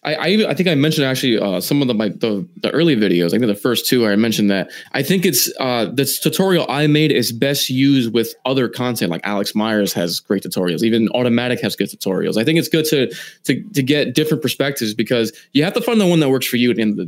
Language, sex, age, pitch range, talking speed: English, male, 20-39, 120-155 Hz, 265 wpm